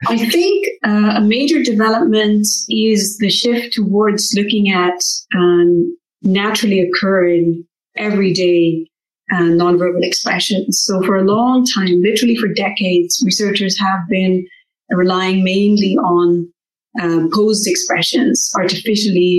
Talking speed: 115 wpm